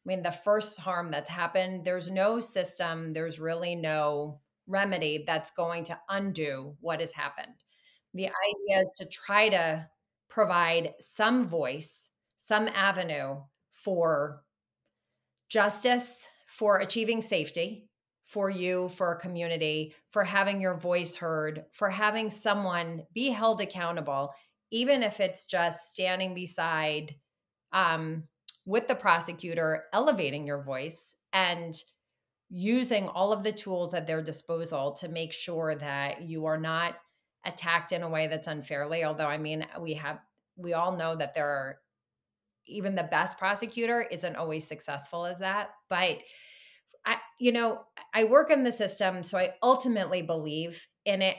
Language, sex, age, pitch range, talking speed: English, female, 30-49, 160-200 Hz, 145 wpm